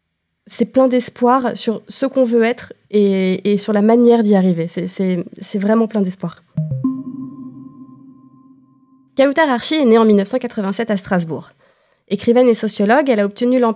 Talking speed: 155 wpm